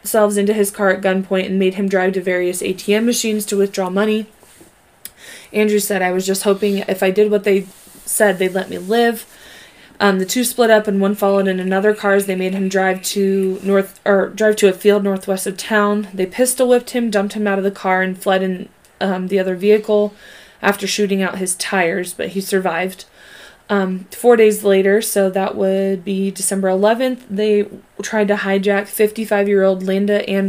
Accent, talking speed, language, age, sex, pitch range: American, 195 wpm, English, 20-39, female, 190-210 Hz